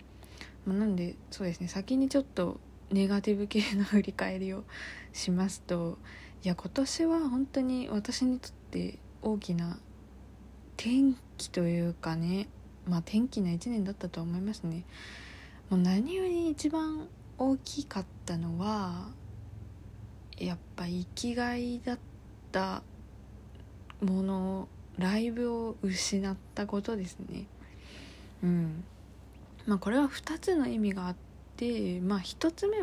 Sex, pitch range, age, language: female, 175-230 Hz, 20-39, Japanese